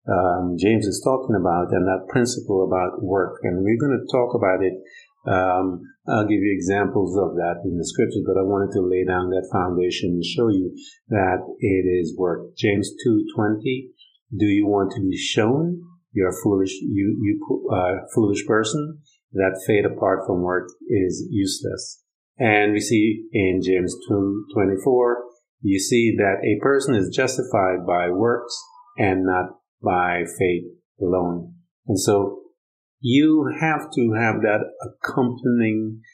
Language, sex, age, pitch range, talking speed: English, male, 50-69, 90-110 Hz, 155 wpm